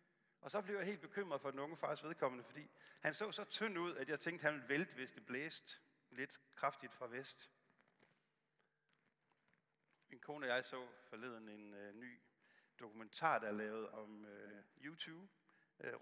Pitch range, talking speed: 120-170 Hz, 180 wpm